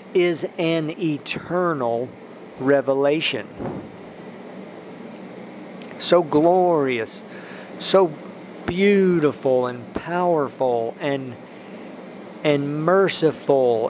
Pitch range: 130-175 Hz